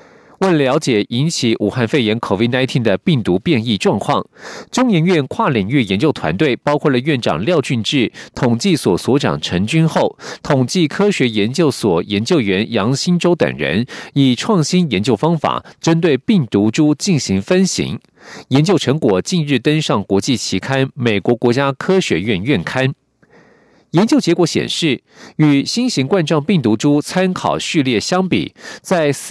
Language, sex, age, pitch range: German, male, 50-69, 125-180 Hz